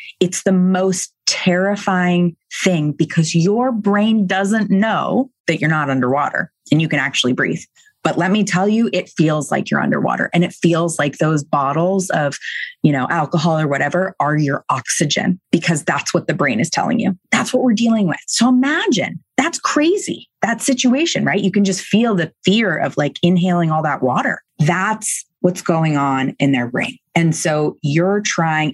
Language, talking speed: English, 180 wpm